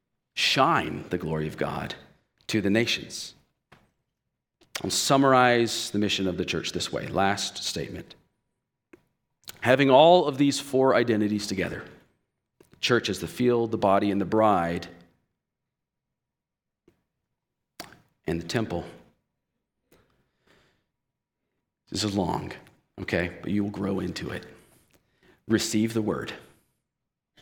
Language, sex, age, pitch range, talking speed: English, male, 40-59, 90-115 Hz, 110 wpm